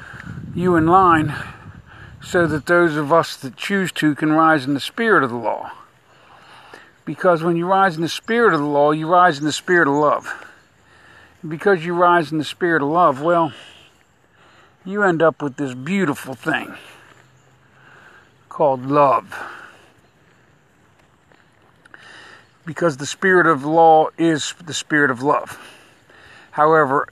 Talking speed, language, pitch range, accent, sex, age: 145 wpm, English, 145-175 Hz, American, male, 50-69